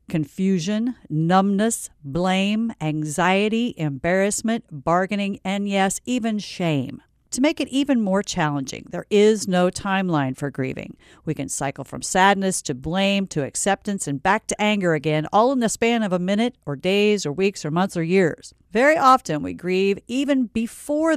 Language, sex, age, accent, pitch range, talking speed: English, female, 50-69, American, 160-220 Hz, 160 wpm